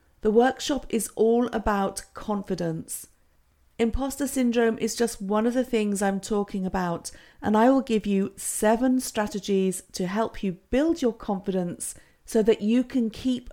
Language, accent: English, British